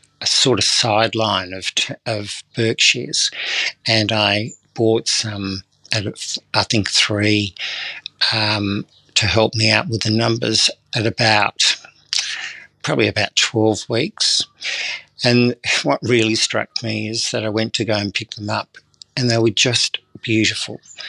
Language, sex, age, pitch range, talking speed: English, male, 60-79, 110-120 Hz, 140 wpm